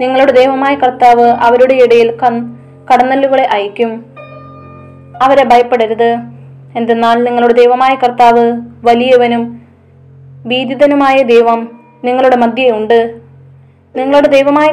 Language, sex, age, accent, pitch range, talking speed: Malayalam, female, 20-39, native, 230-255 Hz, 80 wpm